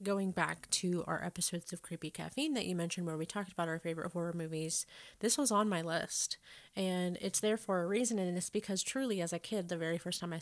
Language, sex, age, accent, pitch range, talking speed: English, female, 30-49, American, 165-205 Hz, 240 wpm